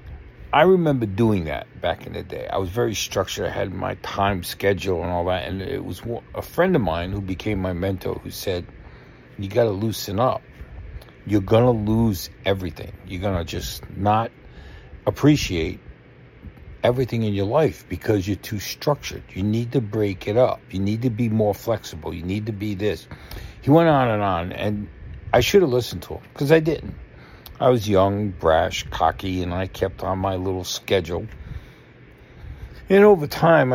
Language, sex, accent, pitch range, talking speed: English, male, American, 95-120 Hz, 185 wpm